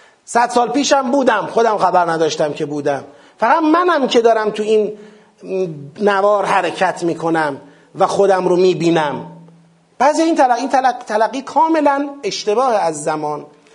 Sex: male